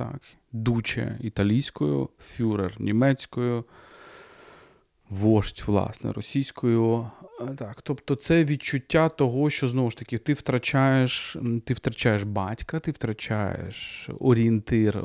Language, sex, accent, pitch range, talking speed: Ukrainian, male, native, 105-135 Hz, 100 wpm